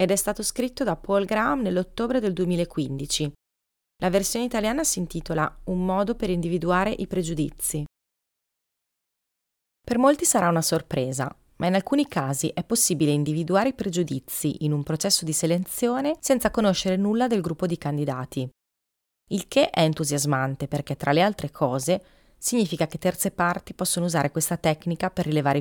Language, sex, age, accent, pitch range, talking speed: Italian, female, 30-49, native, 150-195 Hz, 155 wpm